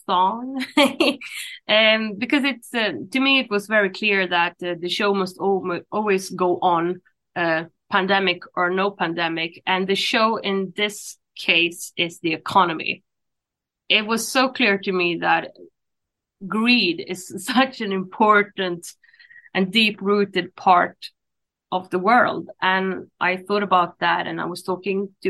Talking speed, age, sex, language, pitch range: 145 wpm, 20-39, female, English, 175-215 Hz